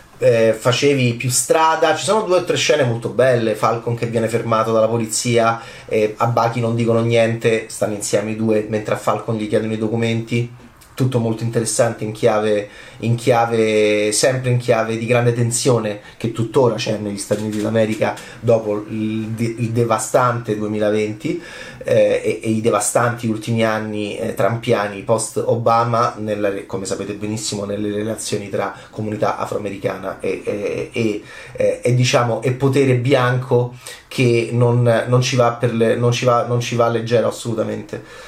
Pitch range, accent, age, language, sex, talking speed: 110-125 Hz, native, 30-49, Italian, male, 160 wpm